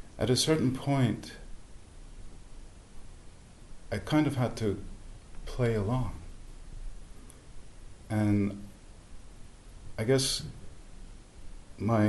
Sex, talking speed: male, 75 wpm